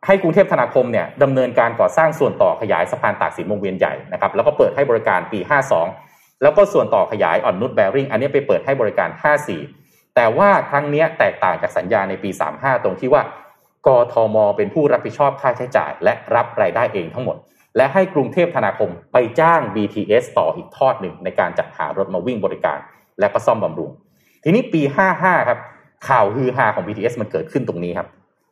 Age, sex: 20-39, male